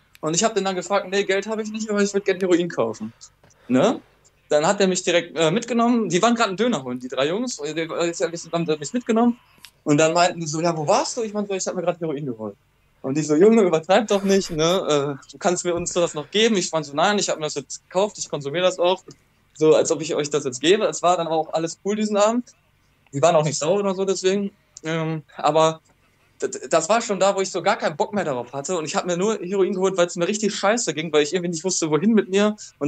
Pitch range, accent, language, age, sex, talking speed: 155-195 Hz, German, German, 20-39, male, 265 wpm